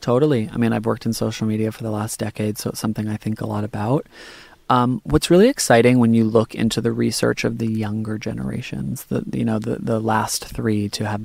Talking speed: 230 wpm